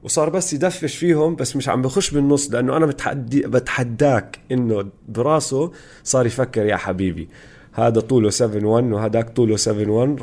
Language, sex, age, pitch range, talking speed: Arabic, male, 30-49, 115-160 Hz, 135 wpm